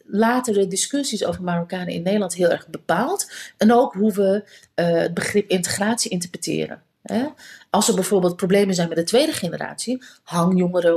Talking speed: 160 wpm